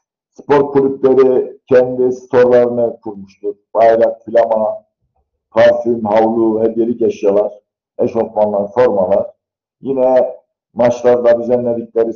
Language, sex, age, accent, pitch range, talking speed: Turkish, male, 50-69, native, 115-180 Hz, 80 wpm